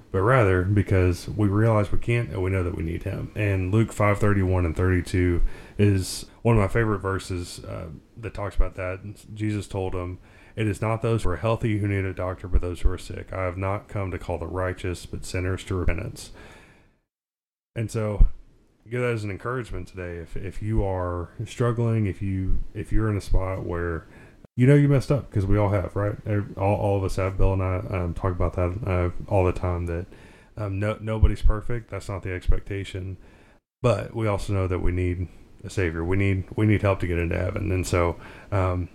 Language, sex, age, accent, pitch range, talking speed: English, male, 30-49, American, 90-105 Hz, 220 wpm